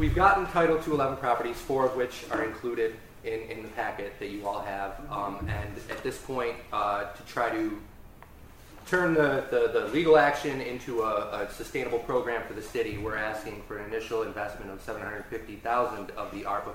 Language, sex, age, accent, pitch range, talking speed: English, male, 30-49, American, 100-125 Hz, 185 wpm